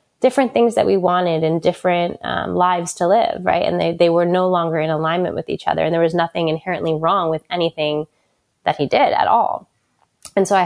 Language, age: English, 20-39